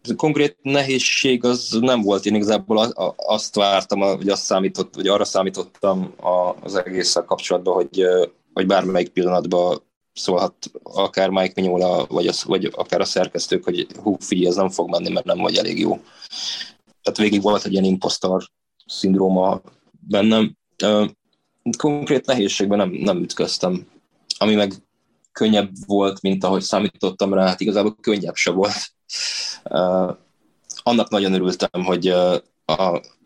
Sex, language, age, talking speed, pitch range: male, Hungarian, 20-39, 135 wpm, 90-105 Hz